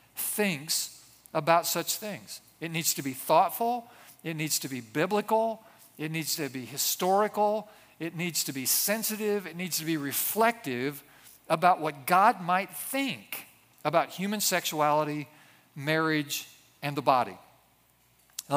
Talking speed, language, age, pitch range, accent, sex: 135 wpm, English, 50-69, 155-200 Hz, American, male